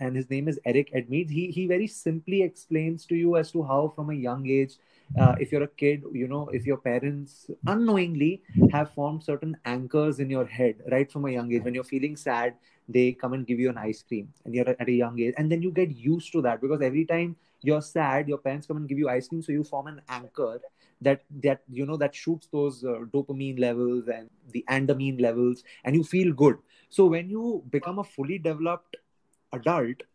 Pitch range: 130-165 Hz